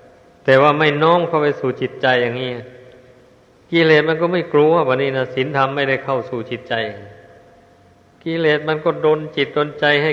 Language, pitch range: Thai, 125-145 Hz